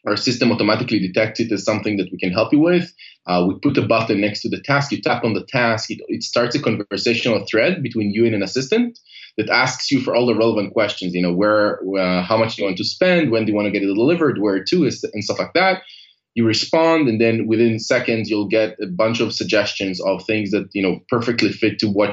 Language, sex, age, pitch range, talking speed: English, male, 20-39, 105-130 Hz, 255 wpm